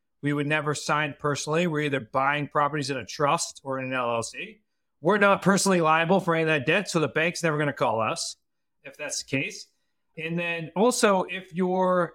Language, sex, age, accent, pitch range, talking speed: English, male, 40-59, American, 145-190 Hz, 205 wpm